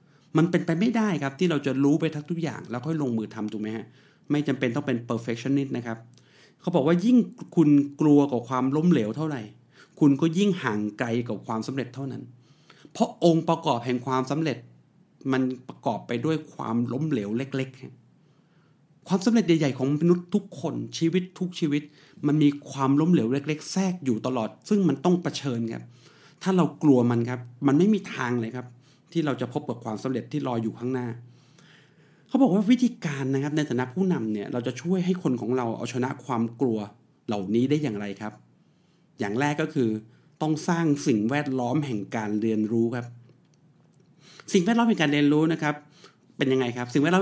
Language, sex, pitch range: Thai, male, 125-160 Hz